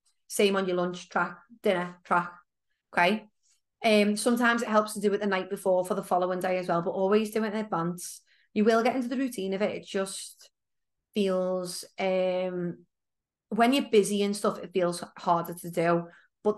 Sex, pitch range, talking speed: female, 180-210 Hz, 190 wpm